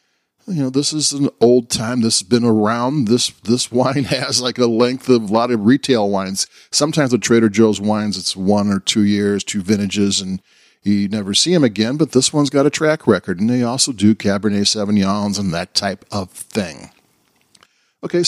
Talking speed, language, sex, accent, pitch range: 195 wpm, English, male, American, 110-135 Hz